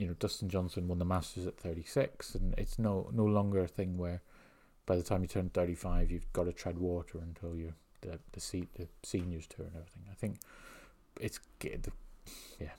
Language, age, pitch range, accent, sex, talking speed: English, 30-49, 90-105 Hz, British, male, 200 wpm